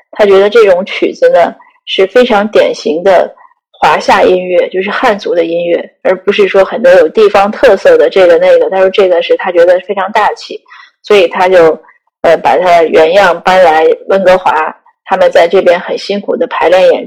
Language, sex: Chinese, female